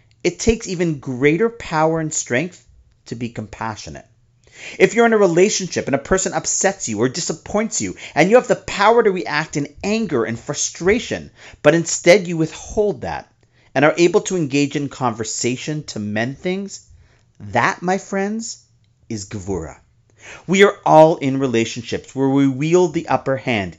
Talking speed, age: 165 wpm, 40-59